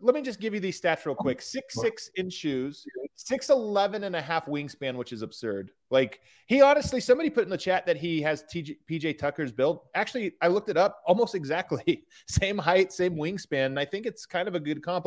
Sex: male